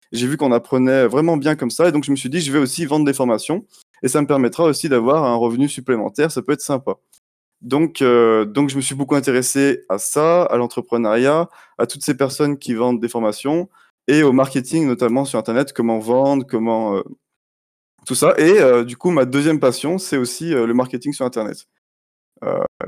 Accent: French